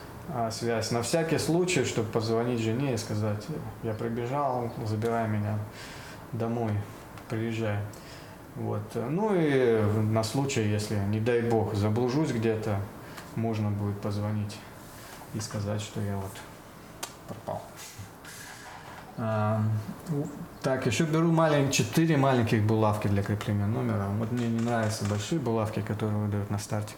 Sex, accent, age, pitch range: male, native, 20-39, 105-125 Hz